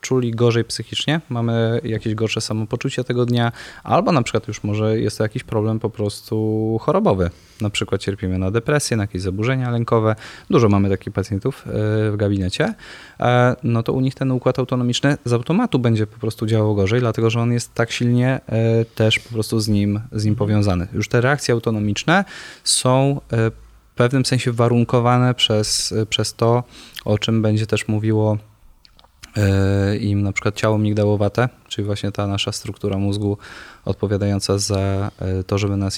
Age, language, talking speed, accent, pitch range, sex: 20-39, Polish, 160 wpm, native, 100-120 Hz, male